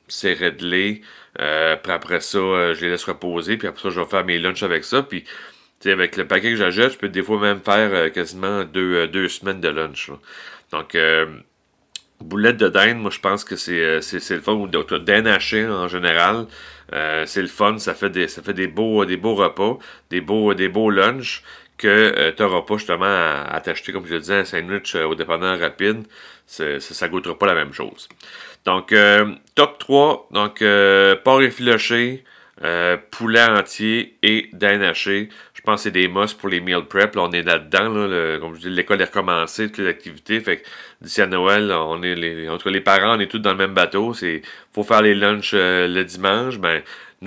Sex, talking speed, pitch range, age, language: male, 220 wpm, 90-105 Hz, 40-59, French